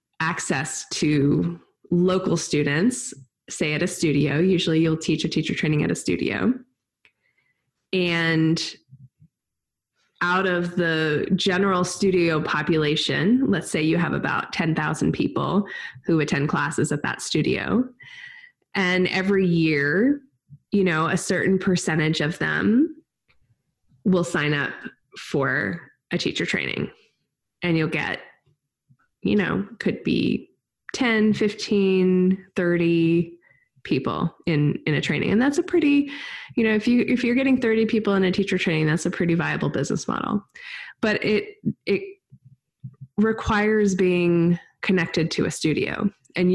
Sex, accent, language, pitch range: female, American, English, 160-205 Hz